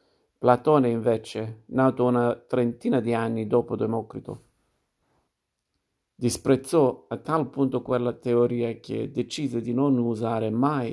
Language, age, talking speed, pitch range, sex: Italian, 50-69, 115 wpm, 115-130 Hz, male